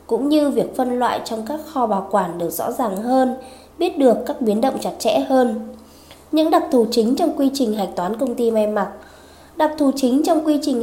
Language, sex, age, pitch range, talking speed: Vietnamese, female, 20-39, 215-280 Hz, 225 wpm